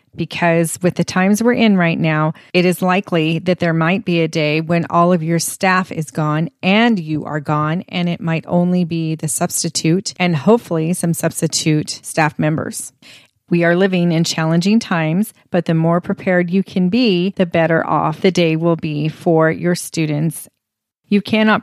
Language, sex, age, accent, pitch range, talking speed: English, female, 30-49, American, 160-180 Hz, 185 wpm